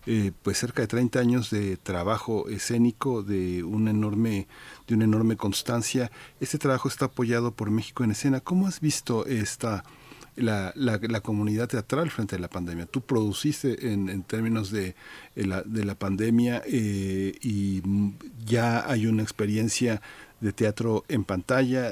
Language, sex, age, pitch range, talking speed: Spanish, male, 50-69, 105-125 Hz, 140 wpm